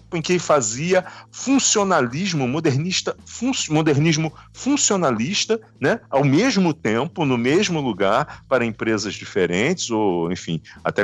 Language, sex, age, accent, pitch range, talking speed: Portuguese, male, 40-59, Brazilian, 100-160 Hz, 105 wpm